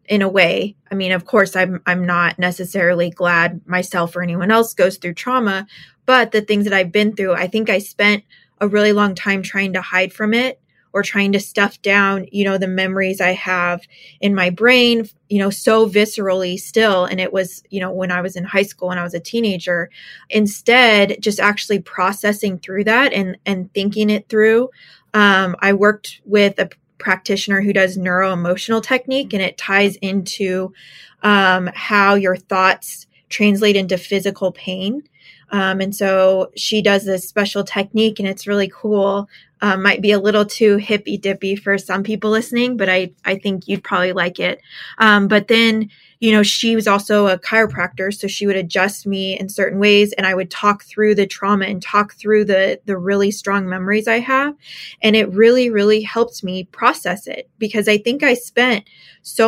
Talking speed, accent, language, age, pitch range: 190 wpm, American, English, 20-39, 185-210 Hz